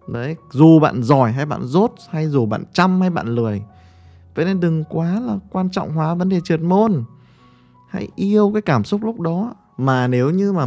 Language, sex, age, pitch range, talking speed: Vietnamese, male, 20-39, 120-175 Hz, 210 wpm